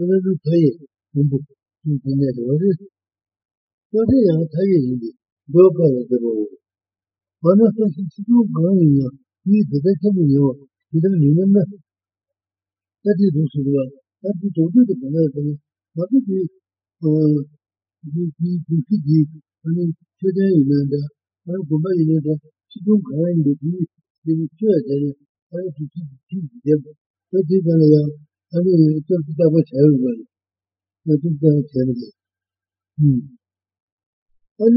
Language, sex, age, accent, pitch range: Italian, male, 50-69, Indian, 135-185 Hz